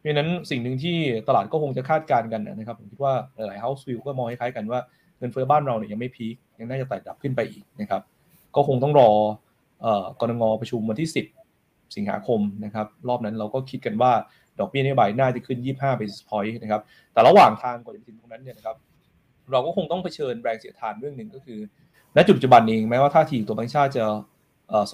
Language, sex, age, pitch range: Thai, male, 20-39, 110-140 Hz